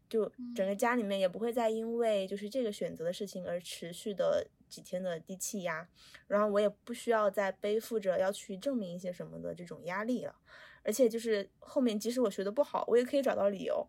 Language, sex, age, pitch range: Chinese, female, 20-39, 190-240 Hz